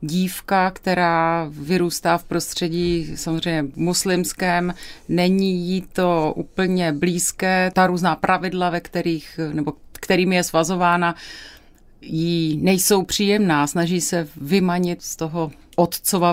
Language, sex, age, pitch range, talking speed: Czech, female, 30-49, 160-180 Hz, 110 wpm